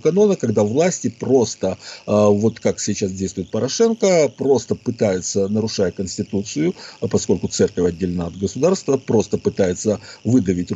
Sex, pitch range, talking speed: male, 105-140 Hz, 115 wpm